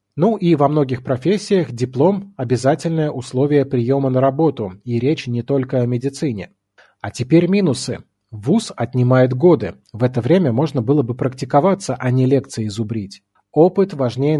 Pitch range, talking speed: 120-160 Hz, 150 wpm